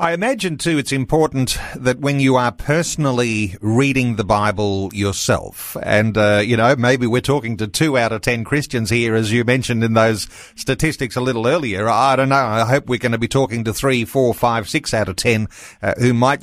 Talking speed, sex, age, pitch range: 210 wpm, male, 40-59, 115-145 Hz